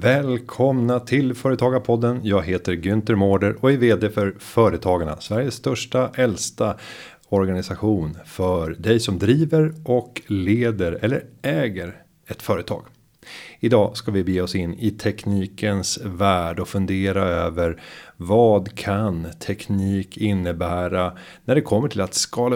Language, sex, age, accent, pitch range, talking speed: Swedish, male, 30-49, native, 95-115 Hz, 130 wpm